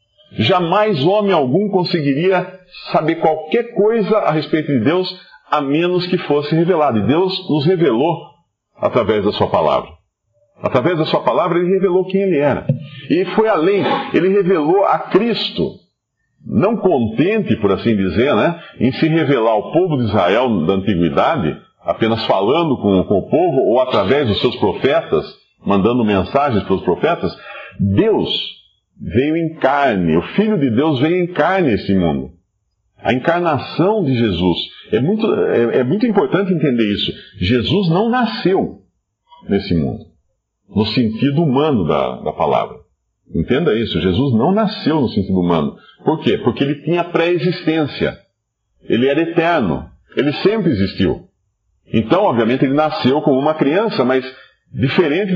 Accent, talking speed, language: Brazilian, 145 wpm, Portuguese